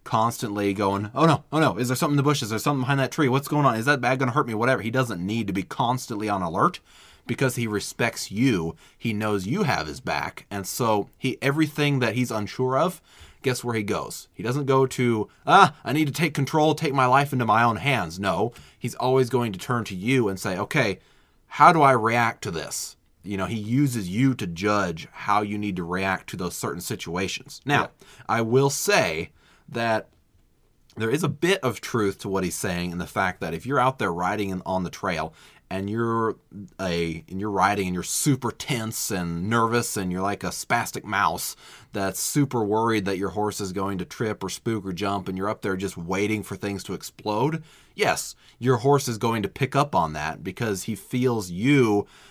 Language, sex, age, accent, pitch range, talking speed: English, male, 20-39, American, 100-130 Hz, 220 wpm